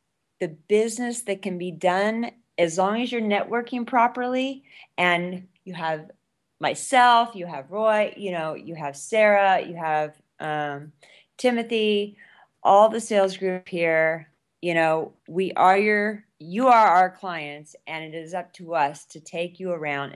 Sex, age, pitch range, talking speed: female, 30-49, 160-200 Hz, 155 wpm